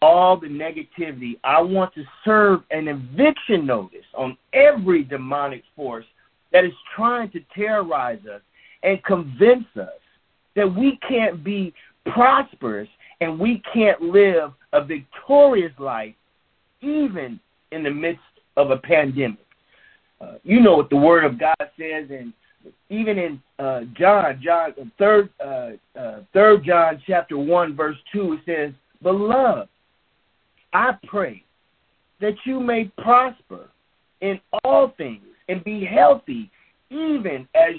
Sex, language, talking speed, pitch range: male, English, 130 wpm, 155-225 Hz